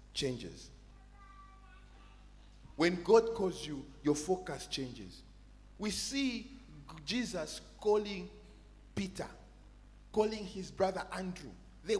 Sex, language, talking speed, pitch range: male, English, 90 wpm, 135-210 Hz